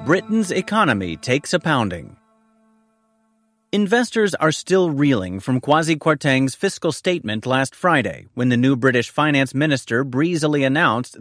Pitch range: 125-170 Hz